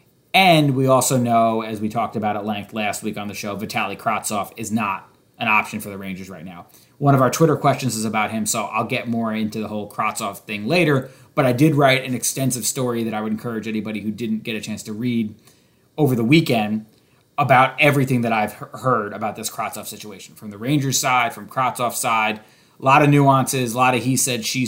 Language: English